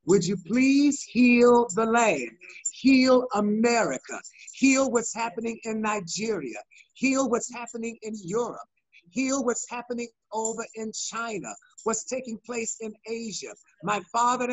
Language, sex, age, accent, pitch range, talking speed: English, male, 50-69, American, 225-265 Hz, 130 wpm